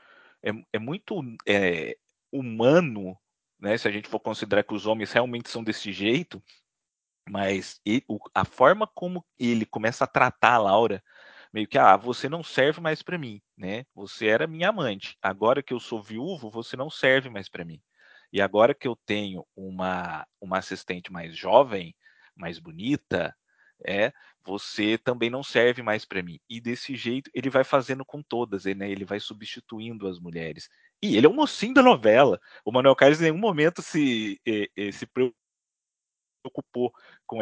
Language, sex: Portuguese, male